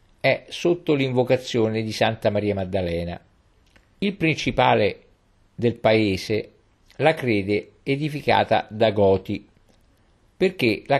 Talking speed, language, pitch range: 100 wpm, Italian, 95-130 Hz